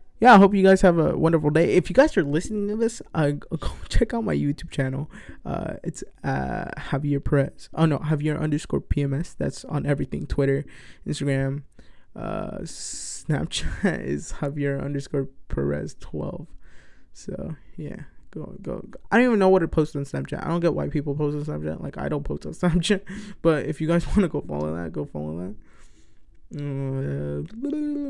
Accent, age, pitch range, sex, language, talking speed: American, 20-39, 135-175 Hz, male, English, 185 wpm